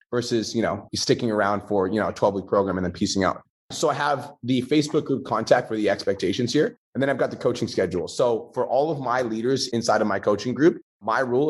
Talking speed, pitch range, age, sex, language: 240 wpm, 105-125 Hz, 30-49, male, English